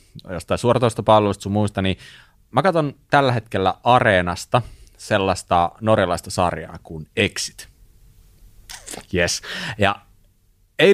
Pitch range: 90-120 Hz